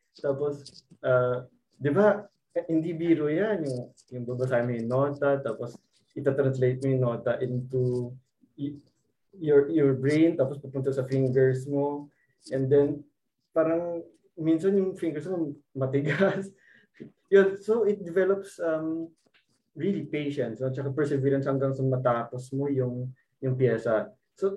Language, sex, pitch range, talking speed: Filipino, male, 125-155 Hz, 90 wpm